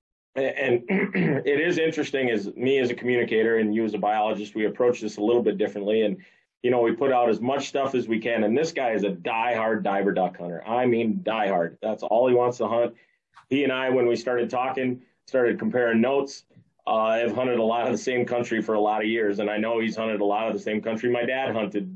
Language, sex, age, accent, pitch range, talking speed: English, male, 30-49, American, 110-130 Hz, 245 wpm